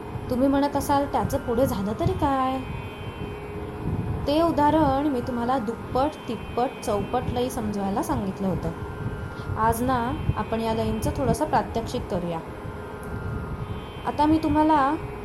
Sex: female